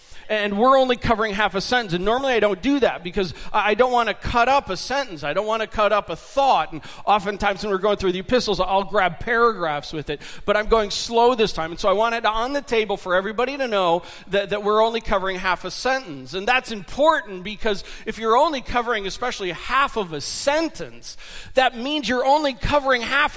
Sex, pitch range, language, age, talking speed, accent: male, 205-265 Hz, English, 40-59, 225 wpm, American